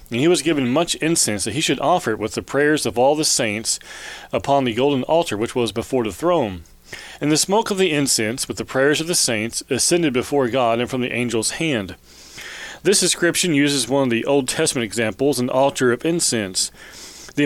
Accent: American